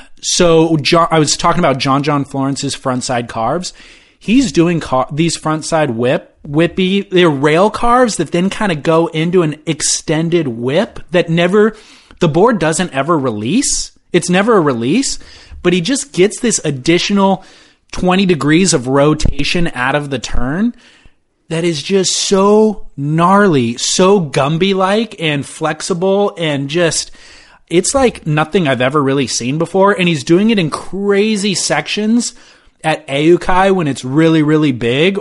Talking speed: 145 wpm